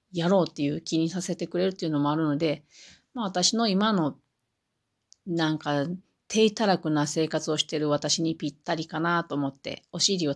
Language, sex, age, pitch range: Japanese, female, 40-59, 155-205 Hz